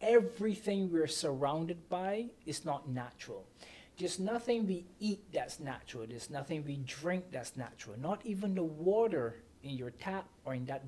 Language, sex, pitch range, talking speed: English, male, 160-220 Hz, 160 wpm